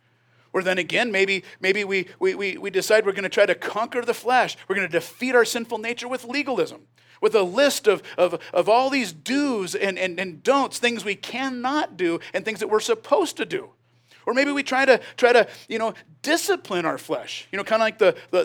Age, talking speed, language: 40-59, 220 wpm, English